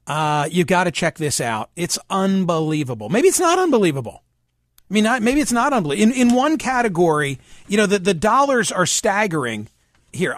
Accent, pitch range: American, 155-215 Hz